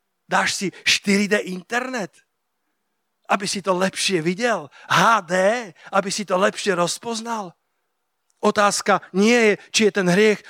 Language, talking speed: Slovak, 125 wpm